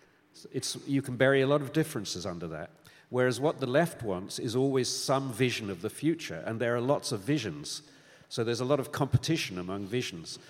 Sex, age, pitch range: male, 50-69, 105-135 Hz